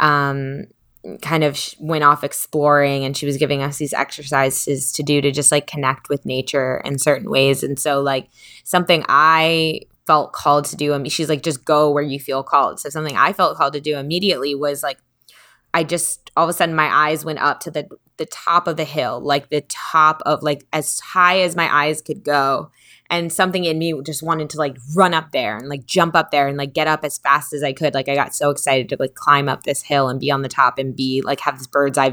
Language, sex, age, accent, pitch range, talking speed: English, female, 20-39, American, 140-155 Hz, 245 wpm